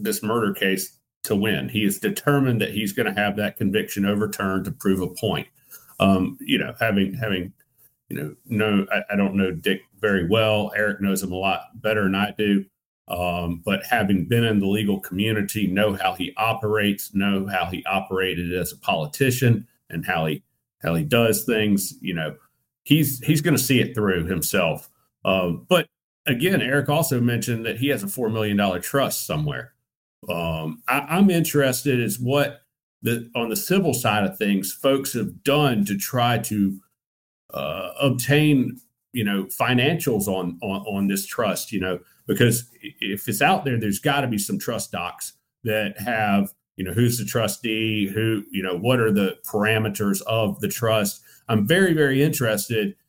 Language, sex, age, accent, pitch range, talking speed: English, male, 40-59, American, 100-125 Hz, 175 wpm